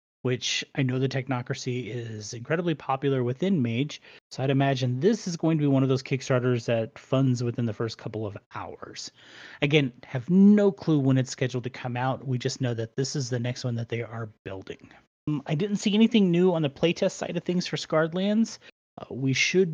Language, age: English, 30-49